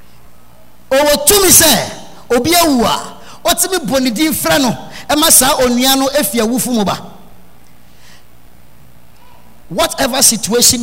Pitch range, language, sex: 195-295 Hz, English, male